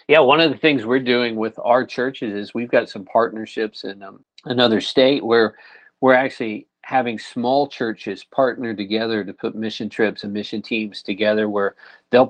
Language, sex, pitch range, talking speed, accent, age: English, male, 100-115 Hz, 180 wpm, American, 50-69